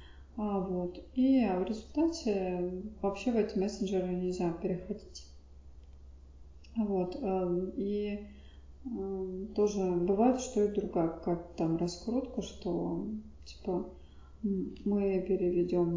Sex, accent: female, native